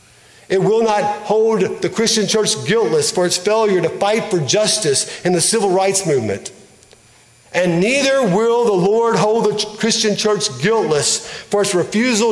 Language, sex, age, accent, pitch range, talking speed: English, male, 50-69, American, 180-215 Hz, 160 wpm